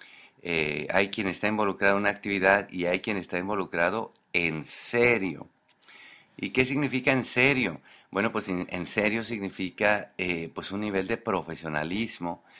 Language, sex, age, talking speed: English, male, 50-69, 150 wpm